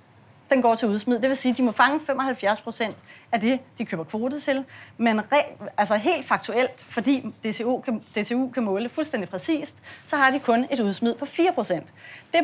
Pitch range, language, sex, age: 230-290 Hz, Danish, female, 30-49